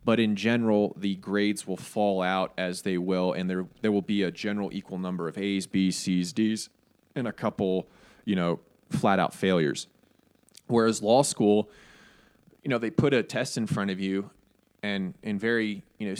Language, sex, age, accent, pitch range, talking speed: English, male, 20-39, American, 95-115 Hz, 185 wpm